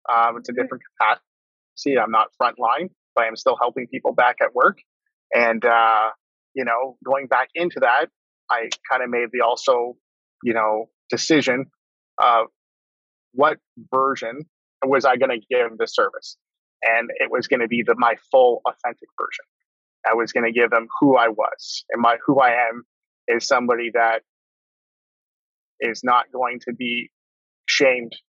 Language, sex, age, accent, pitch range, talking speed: English, male, 30-49, American, 115-135 Hz, 160 wpm